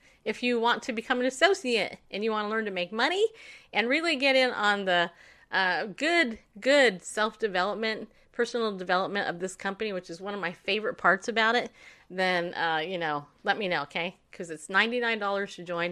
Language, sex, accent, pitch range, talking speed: English, female, American, 185-270 Hz, 195 wpm